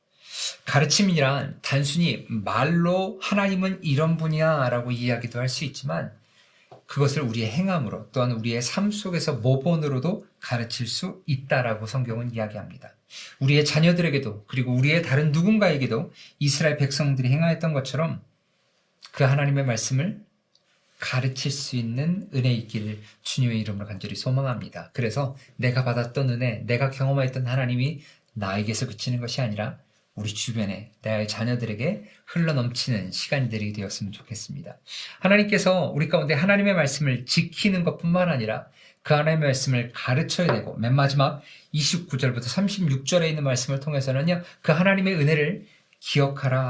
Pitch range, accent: 120-160 Hz, native